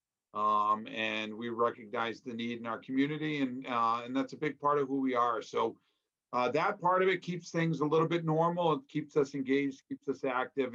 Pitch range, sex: 125-150 Hz, male